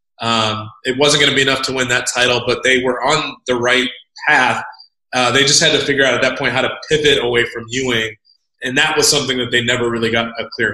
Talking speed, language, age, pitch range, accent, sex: 250 wpm, English, 20-39, 110-130 Hz, American, male